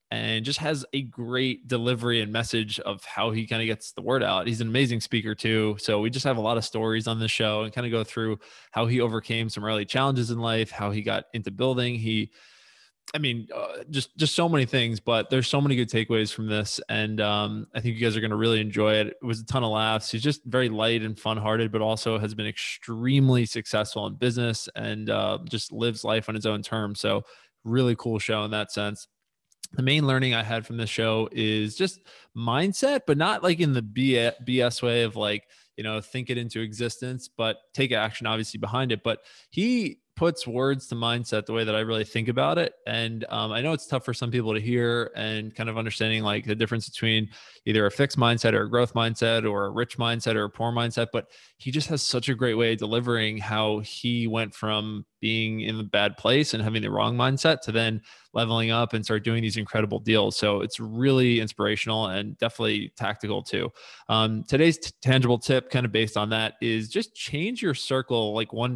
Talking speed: 225 wpm